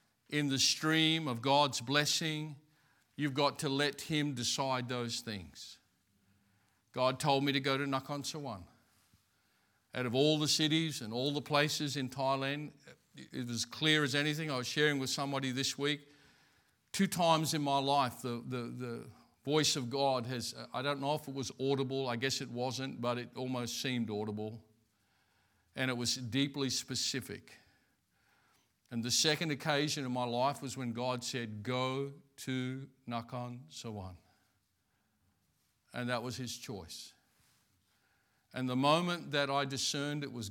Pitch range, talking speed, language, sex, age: 120-140 Hz, 155 wpm, English, male, 50-69